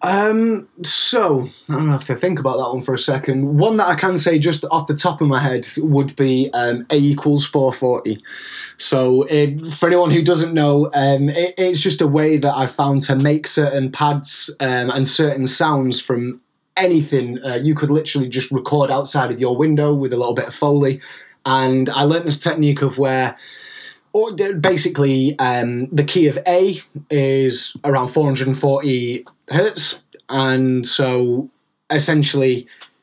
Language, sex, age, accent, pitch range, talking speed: English, male, 20-39, British, 130-155 Hz, 175 wpm